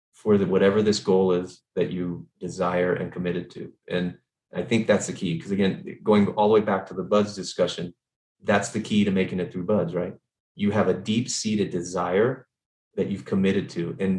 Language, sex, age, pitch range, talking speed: English, male, 30-49, 95-105 Hz, 205 wpm